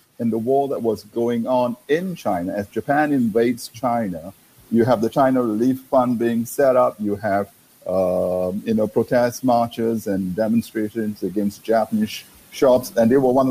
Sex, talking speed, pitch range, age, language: male, 170 wpm, 110-135 Hz, 50-69, English